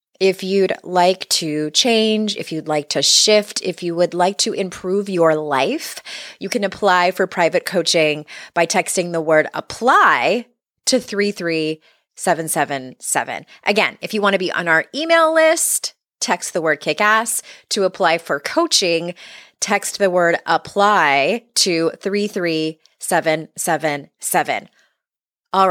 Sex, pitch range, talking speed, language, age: female, 170-230 Hz, 135 wpm, English, 20-39